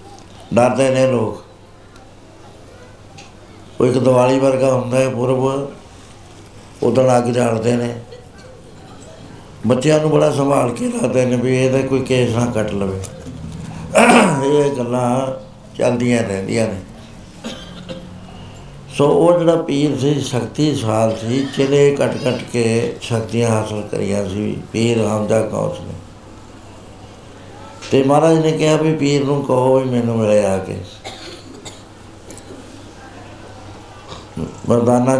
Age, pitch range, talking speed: 60-79, 105-130 Hz, 115 wpm